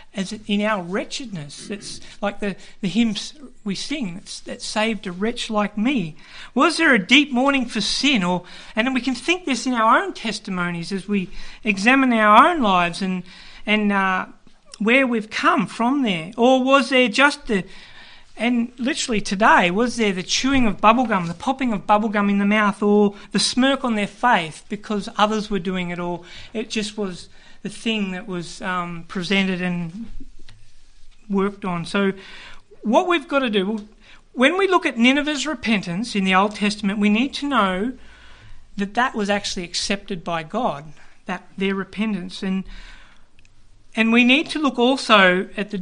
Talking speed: 175 wpm